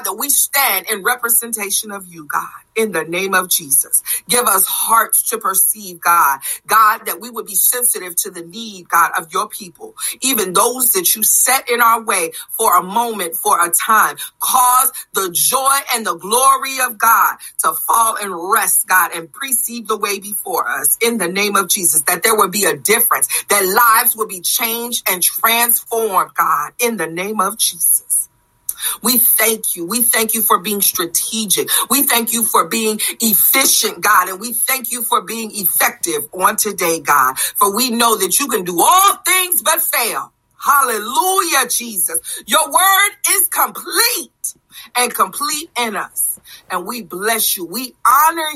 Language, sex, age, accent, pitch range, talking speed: English, female, 40-59, American, 185-245 Hz, 175 wpm